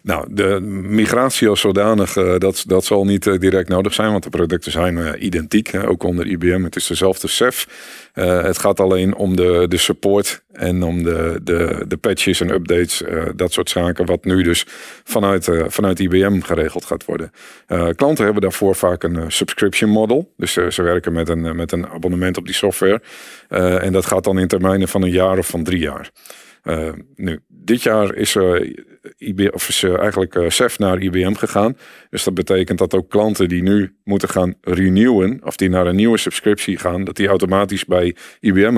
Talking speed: 195 wpm